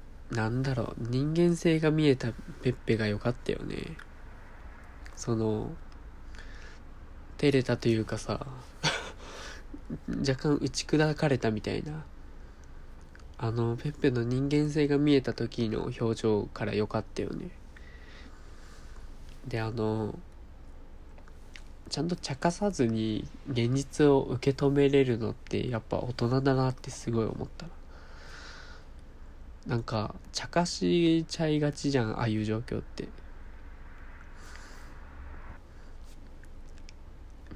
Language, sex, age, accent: Japanese, male, 20-39, native